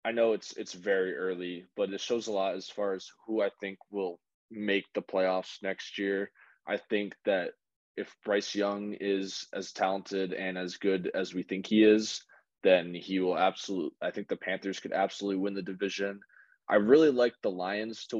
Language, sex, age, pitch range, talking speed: English, male, 20-39, 95-110 Hz, 195 wpm